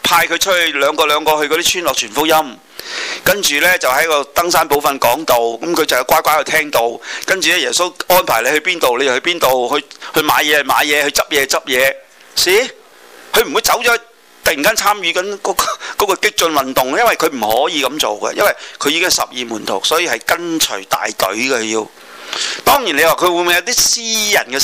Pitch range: 115-170 Hz